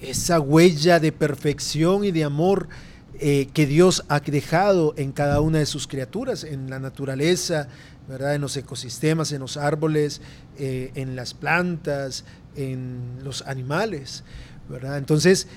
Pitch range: 140-170 Hz